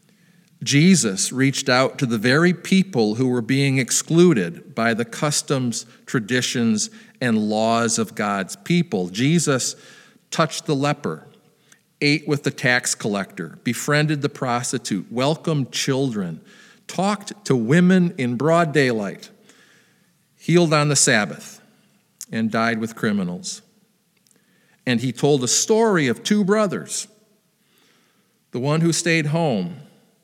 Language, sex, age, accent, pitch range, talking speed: English, male, 50-69, American, 135-195 Hz, 120 wpm